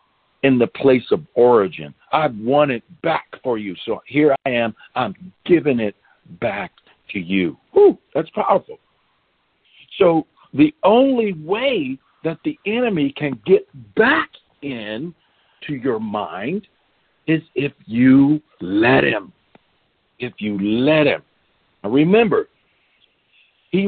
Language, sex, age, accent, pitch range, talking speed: English, male, 60-79, American, 130-200 Hz, 125 wpm